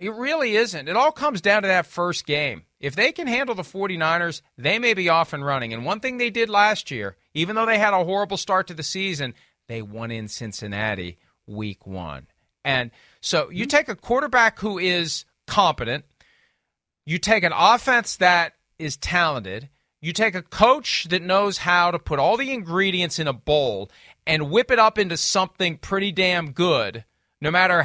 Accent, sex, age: American, male, 40-59